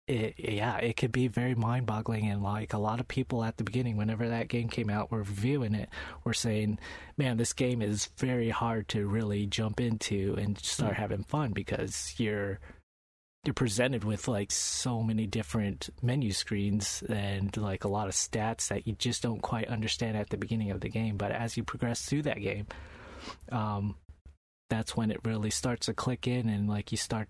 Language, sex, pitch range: English, male, 100-120 Hz